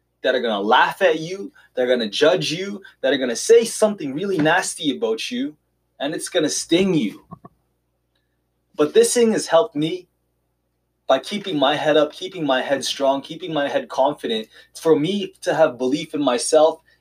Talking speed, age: 195 wpm, 20-39